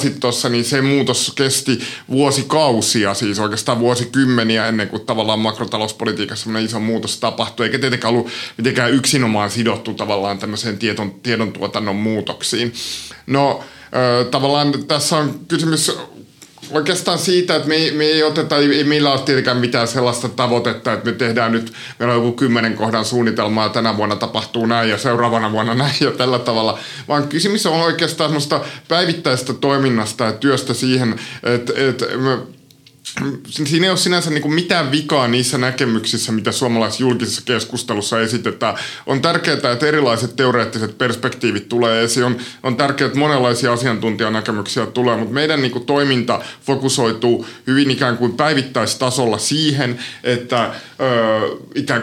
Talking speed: 135 wpm